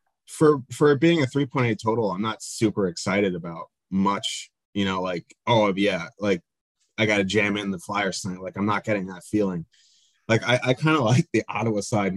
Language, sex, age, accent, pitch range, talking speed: English, male, 20-39, American, 95-110 Hz, 205 wpm